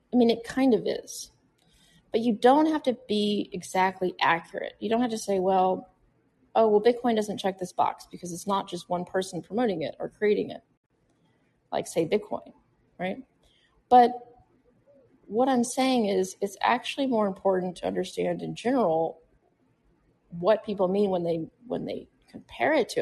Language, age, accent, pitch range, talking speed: English, 30-49, American, 180-225 Hz, 170 wpm